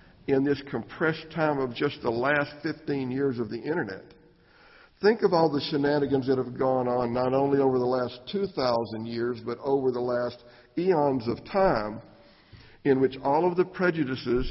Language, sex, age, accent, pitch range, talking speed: English, male, 60-79, American, 120-145 Hz, 175 wpm